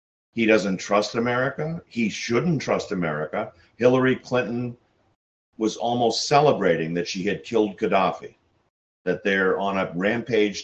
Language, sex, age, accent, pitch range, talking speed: English, male, 50-69, American, 85-110 Hz, 130 wpm